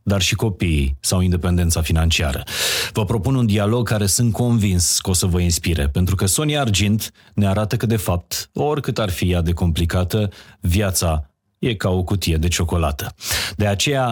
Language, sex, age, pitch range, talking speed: Romanian, male, 30-49, 90-110 Hz, 180 wpm